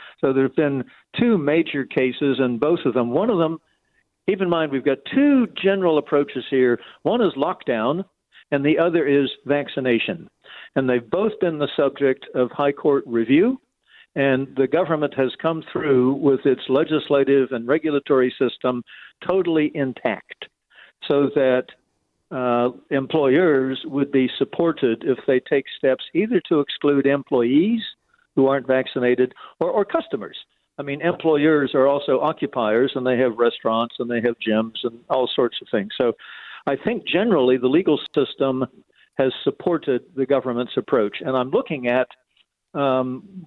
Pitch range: 130-160 Hz